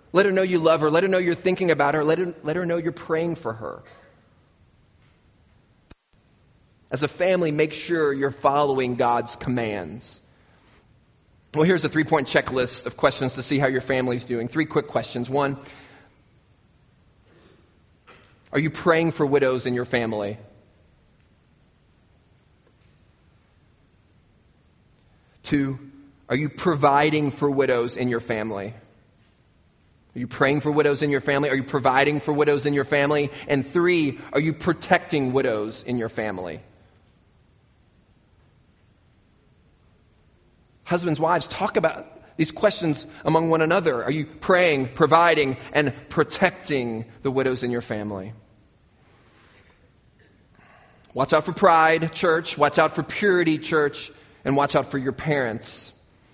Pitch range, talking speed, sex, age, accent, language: 120-155 Hz, 135 wpm, male, 30-49, American, English